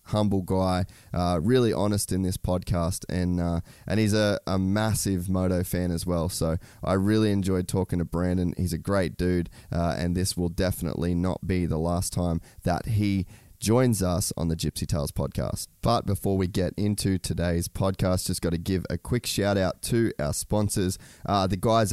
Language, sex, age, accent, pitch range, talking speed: English, male, 20-39, Australian, 90-105 Hz, 190 wpm